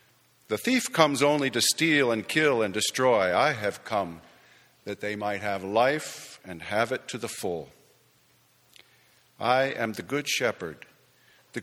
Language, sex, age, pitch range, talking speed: English, male, 50-69, 110-145 Hz, 155 wpm